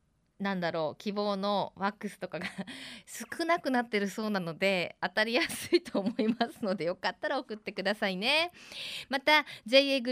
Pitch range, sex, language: 180-265 Hz, female, Japanese